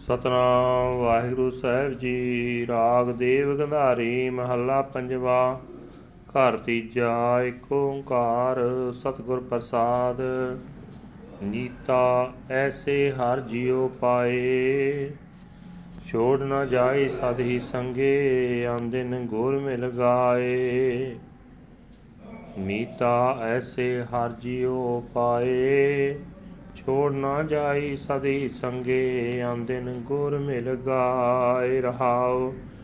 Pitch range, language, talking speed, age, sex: 125-140 Hz, Punjabi, 80 wpm, 30-49, male